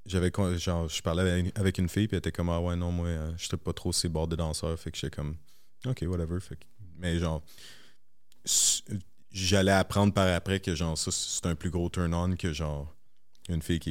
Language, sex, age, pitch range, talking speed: French, male, 30-49, 85-95 Hz, 220 wpm